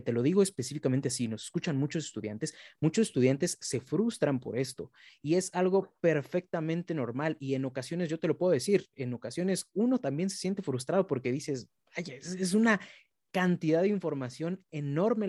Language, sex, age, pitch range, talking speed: Spanish, male, 30-49, 125-165 Hz, 175 wpm